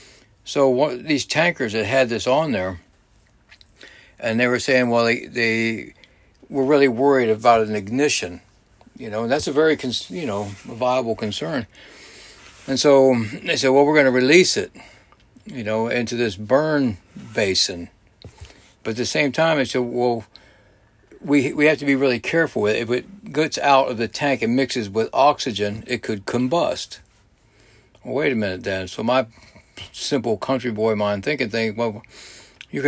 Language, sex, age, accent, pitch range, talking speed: English, male, 60-79, American, 105-135 Hz, 170 wpm